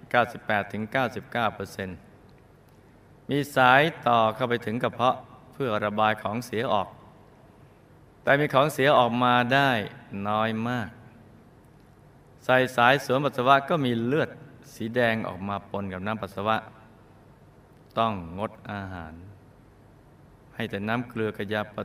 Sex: male